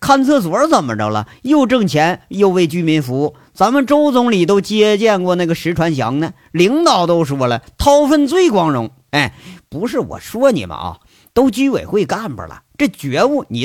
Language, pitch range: Chinese, 130-195 Hz